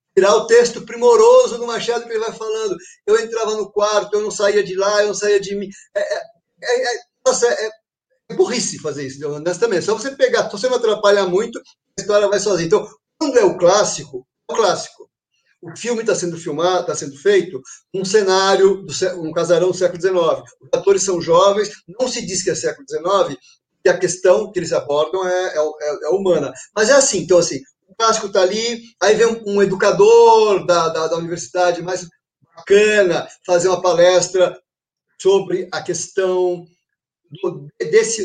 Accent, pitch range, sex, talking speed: Brazilian, 180-245 Hz, male, 180 wpm